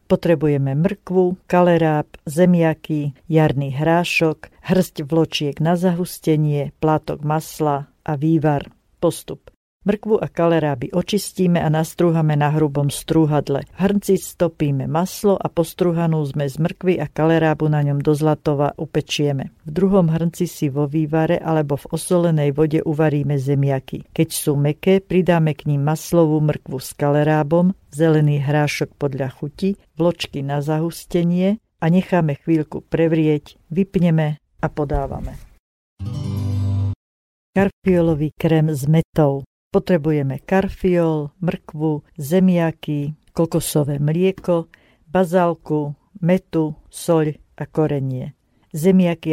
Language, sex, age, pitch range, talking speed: Slovak, female, 50-69, 145-170 Hz, 110 wpm